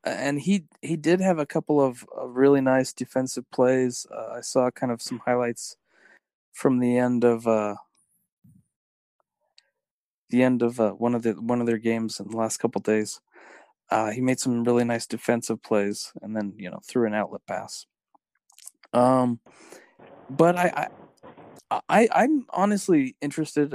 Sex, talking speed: male, 165 wpm